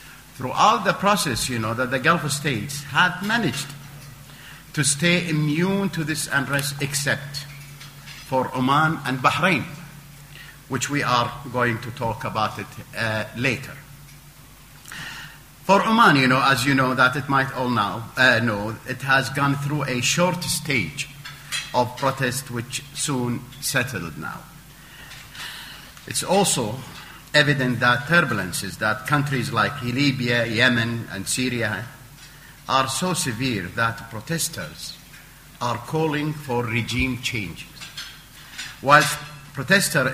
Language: English